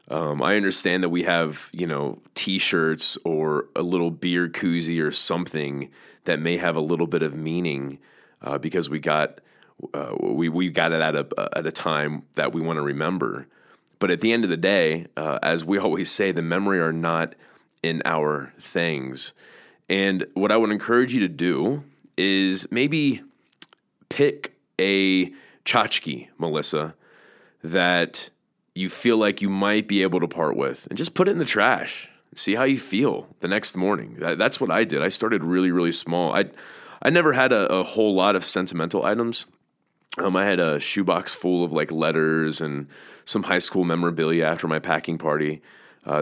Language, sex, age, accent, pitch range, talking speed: English, male, 30-49, American, 80-95 Hz, 180 wpm